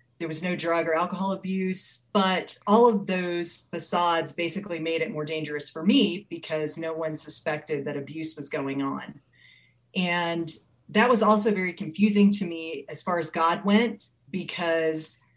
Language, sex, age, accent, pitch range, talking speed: English, female, 30-49, American, 155-190 Hz, 165 wpm